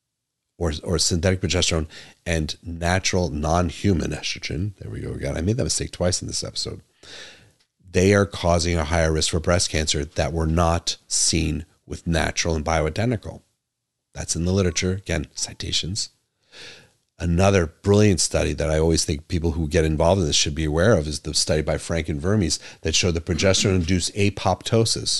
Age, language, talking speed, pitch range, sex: 40-59, English, 170 wpm, 80-100 Hz, male